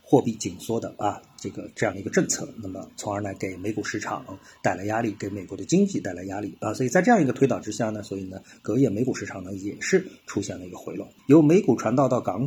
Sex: male